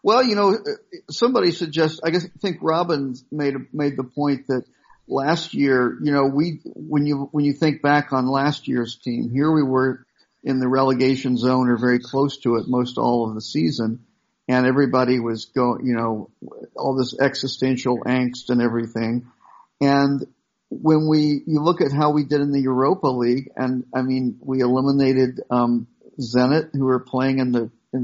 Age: 50-69